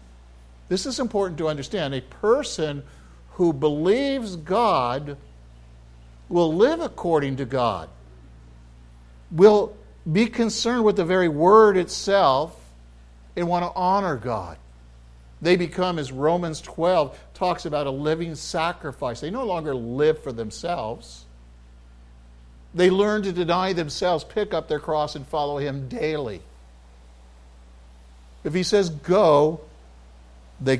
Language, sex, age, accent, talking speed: English, male, 60-79, American, 120 wpm